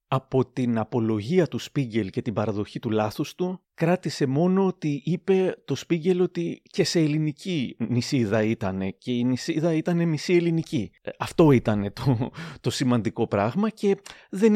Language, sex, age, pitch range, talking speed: Greek, male, 30-49, 110-155 Hz, 155 wpm